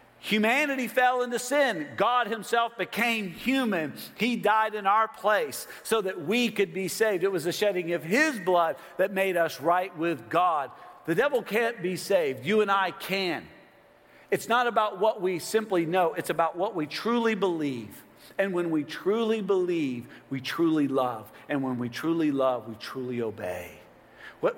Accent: American